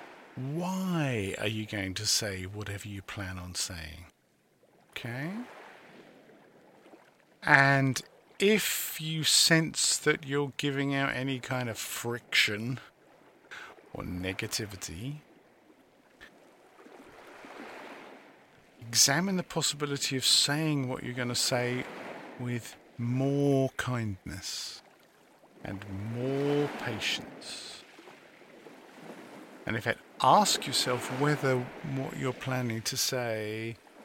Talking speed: 95 wpm